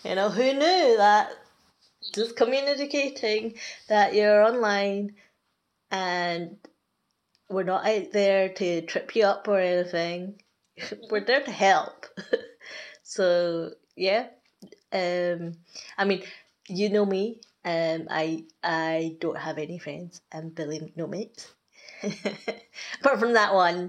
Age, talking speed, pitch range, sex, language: 20-39, 120 wpm, 160-210 Hz, female, English